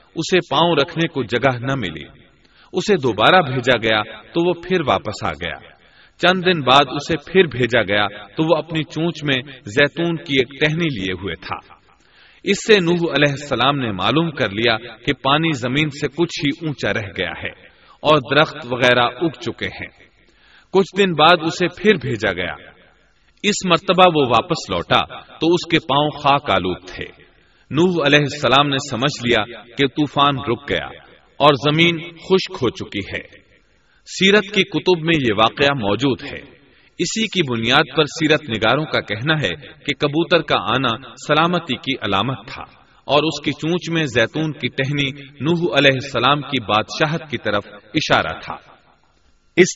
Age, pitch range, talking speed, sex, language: 40-59, 115-165 Hz, 165 wpm, male, Urdu